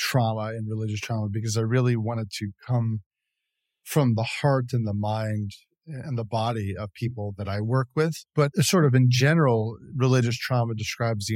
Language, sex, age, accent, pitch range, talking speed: English, male, 40-59, American, 105-130 Hz, 180 wpm